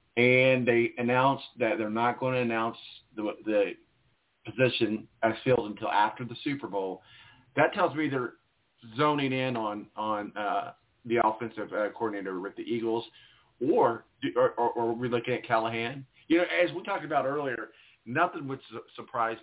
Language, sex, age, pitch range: English, male, 40-59, 115-140 Hz